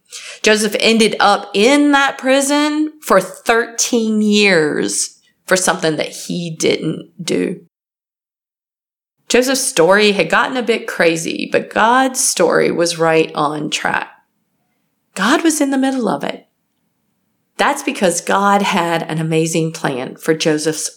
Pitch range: 170-245 Hz